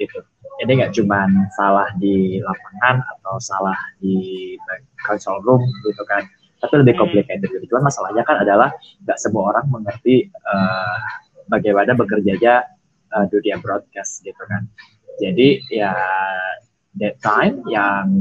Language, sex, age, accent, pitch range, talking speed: Indonesian, male, 20-39, native, 100-135 Hz, 135 wpm